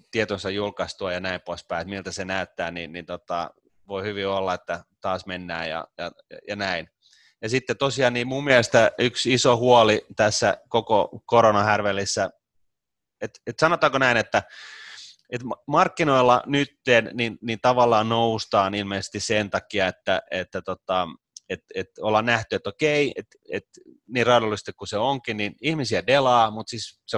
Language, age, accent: Finnish, 30-49, native